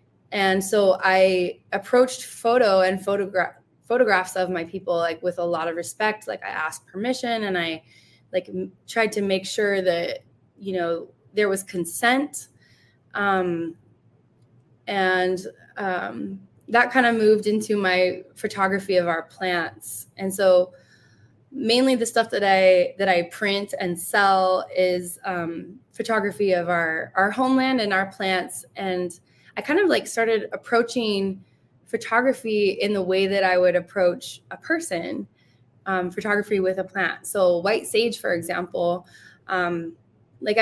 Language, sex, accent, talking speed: English, female, American, 145 wpm